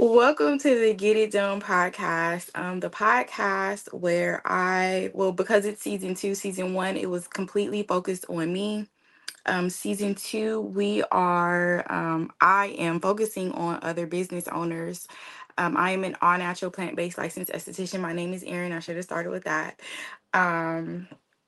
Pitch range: 170-200 Hz